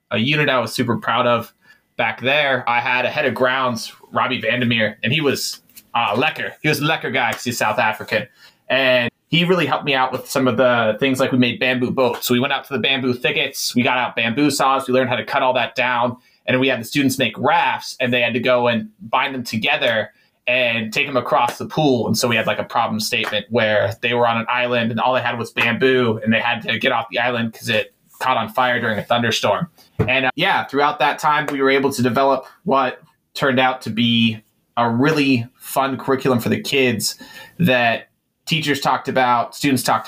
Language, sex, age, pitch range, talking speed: English, male, 20-39, 115-135 Hz, 235 wpm